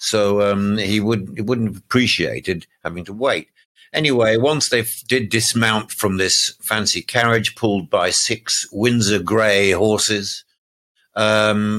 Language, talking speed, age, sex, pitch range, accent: English, 130 wpm, 60-79, male, 100-120 Hz, British